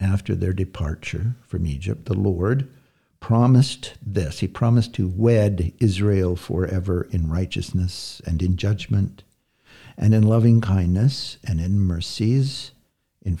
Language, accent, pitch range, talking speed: English, American, 90-115 Hz, 125 wpm